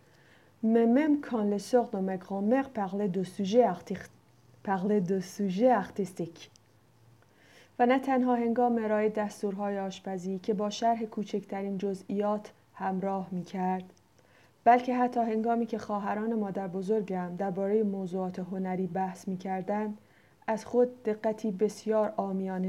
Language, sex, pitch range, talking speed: Persian, female, 195-235 Hz, 80 wpm